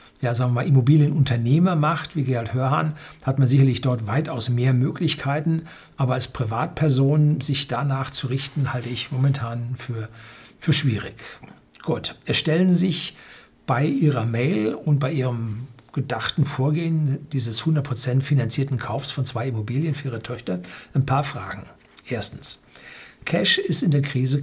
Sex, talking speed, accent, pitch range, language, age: male, 145 wpm, German, 120-150 Hz, German, 60-79